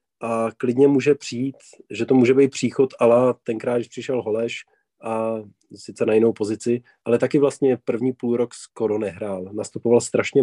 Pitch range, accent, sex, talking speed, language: 120-140 Hz, native, male, 165 wpm, Czech